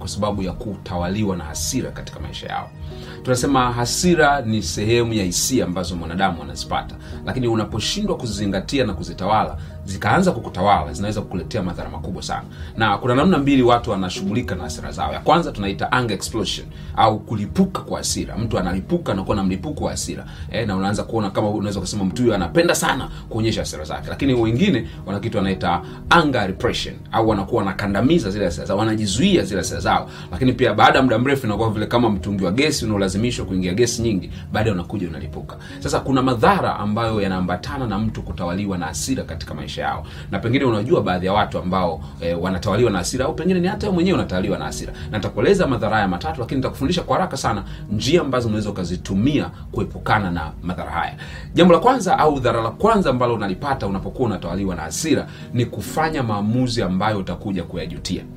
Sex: male